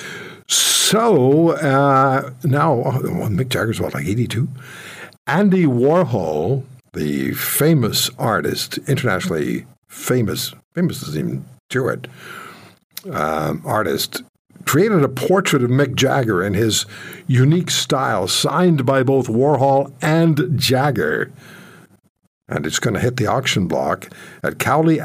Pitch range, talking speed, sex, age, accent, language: 125-160 Hz, 115 wpm, male, 60-79, American, English